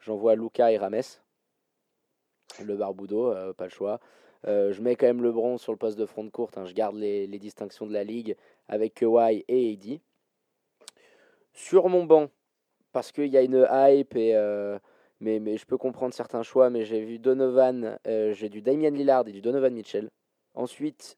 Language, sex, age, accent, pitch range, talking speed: French, male, 20-39, French, 105-140 Hz, 195 wpm